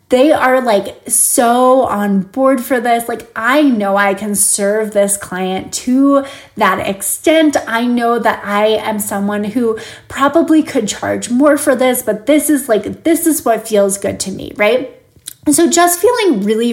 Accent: American